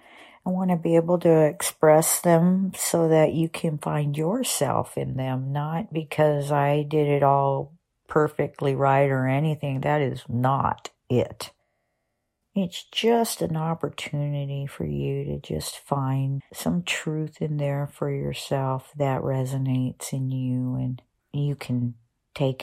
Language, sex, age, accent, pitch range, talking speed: English, female, 50-69, American, 130-165 Hz, 140 wpm